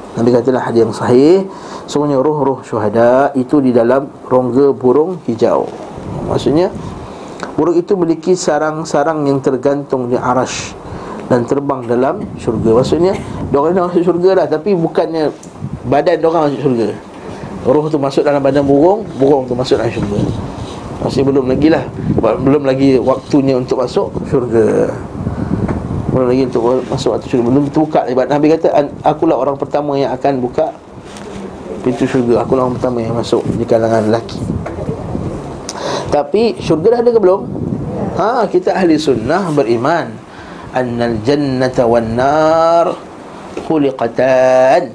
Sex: male